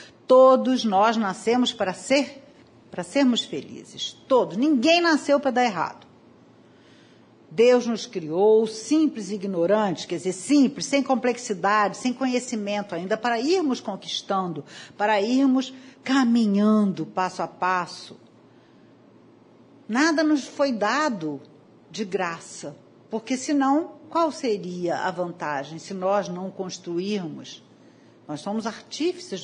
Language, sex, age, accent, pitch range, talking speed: Portuguese, female, 50-69, Brazilian, 195-275 Hz, 110 wpm